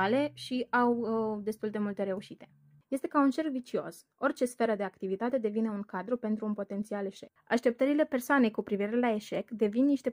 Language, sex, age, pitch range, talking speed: Romanian, female, 20-39, 200-245 Hz, 180 wpm